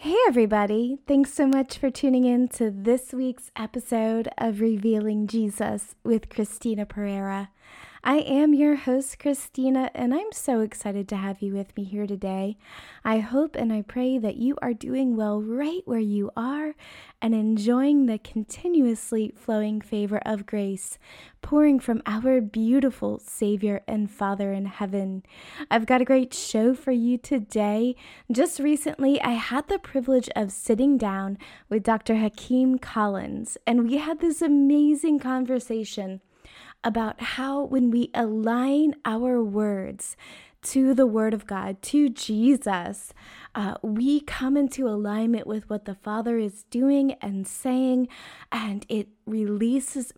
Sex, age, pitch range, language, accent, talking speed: female, 20-39, 210-265 Hz, English, American, 145 wpm